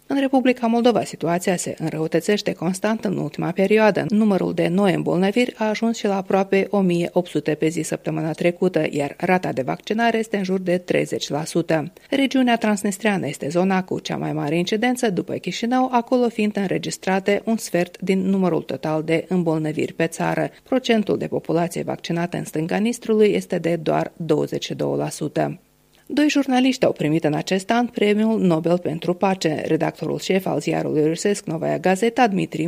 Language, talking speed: Romanian, 160 wpm